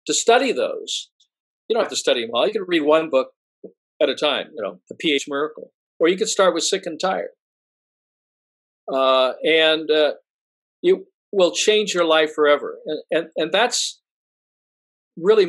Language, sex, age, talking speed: English, male, 50-69, 175 wpm